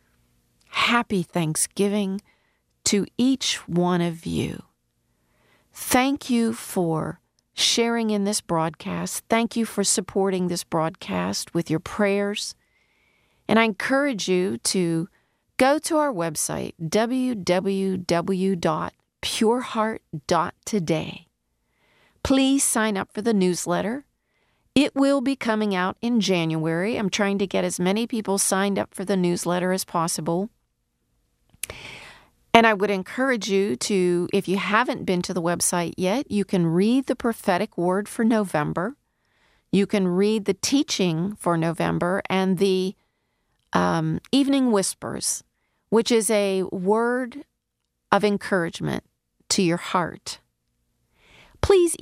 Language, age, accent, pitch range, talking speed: English, 40-59, American, 175-225 Hz, 120 wpm